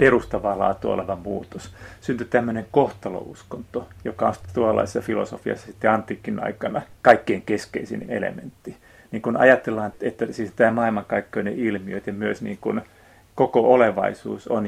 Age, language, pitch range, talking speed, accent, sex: 30-49, Finnish, 100-115 Hz, 130 wpm, native, male